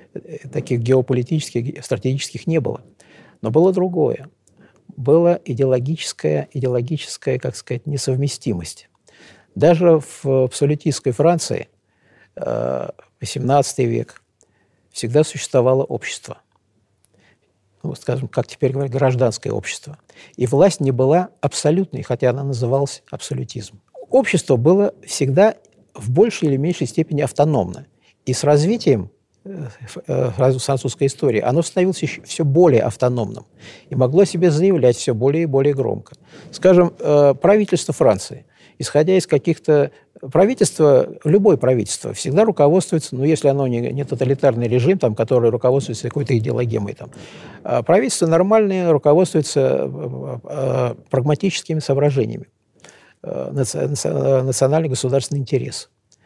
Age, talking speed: 50-69, 110 wpm